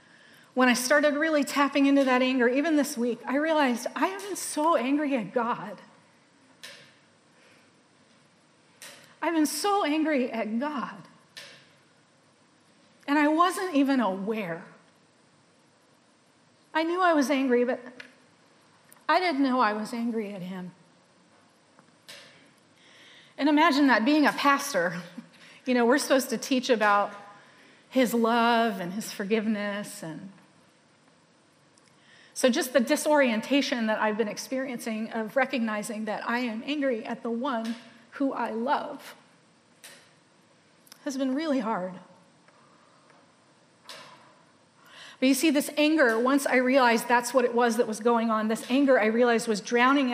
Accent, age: American, 40-59